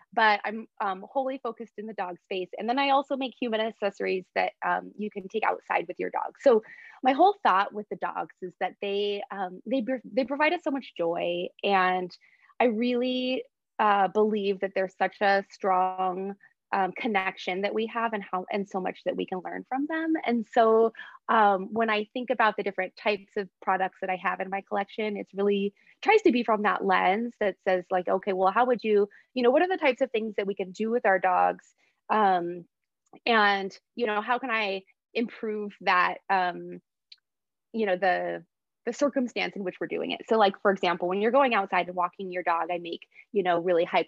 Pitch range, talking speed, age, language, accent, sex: 185-240 Hz, 210 wpm, 20-39, English, American, female